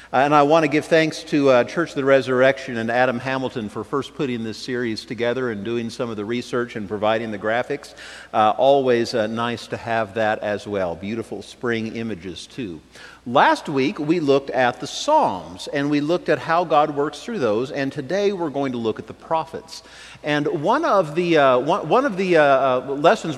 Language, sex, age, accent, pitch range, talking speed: English, male, 50-69, American, 120-185 Hz, 210 wpm